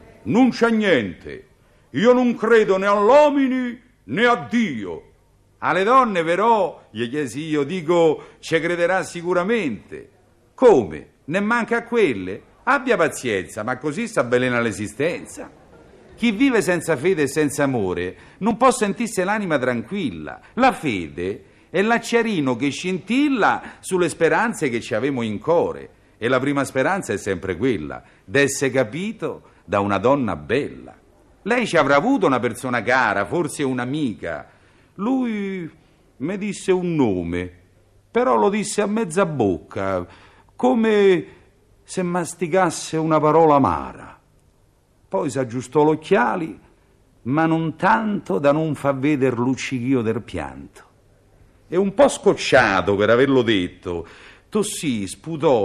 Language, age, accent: Italian, 50-69, native